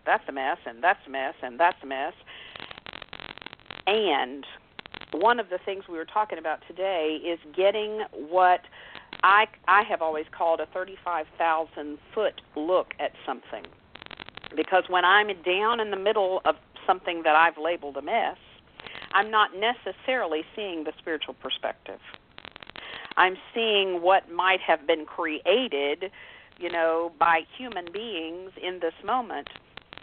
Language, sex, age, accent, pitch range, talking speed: English, female, 50-69, American, 160-195 Hz, 140 wpm